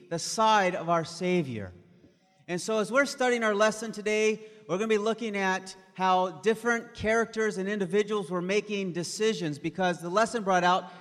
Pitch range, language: 165-215 Hz, English